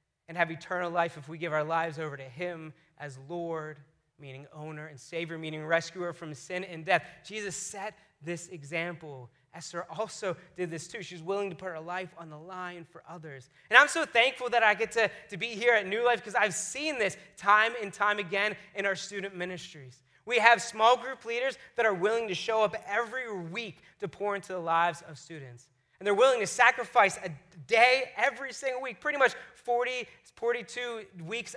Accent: American